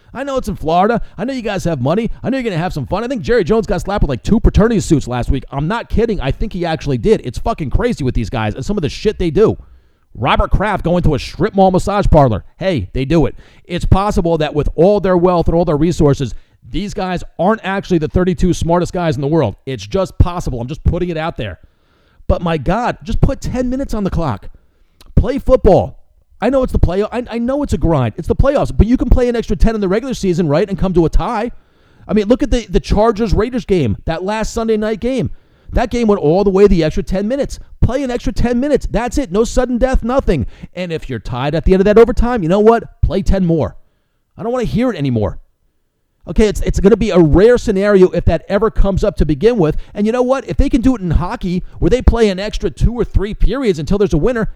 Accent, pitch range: American, 155-225 Hz